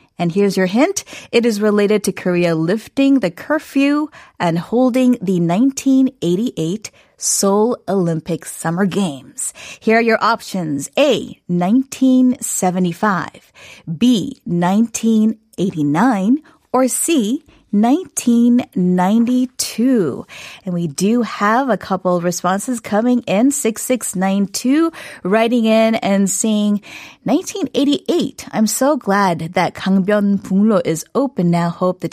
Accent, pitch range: American, 175-245 Hz